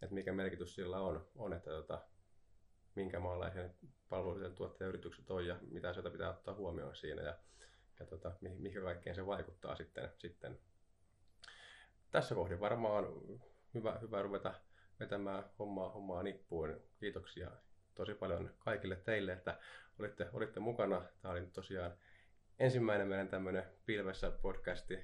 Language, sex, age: Finnish, male, 20-39